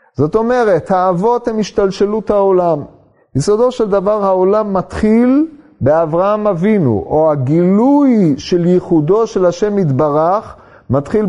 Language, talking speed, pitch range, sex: Hebrew, 110 wpm, 150-195 Hz, male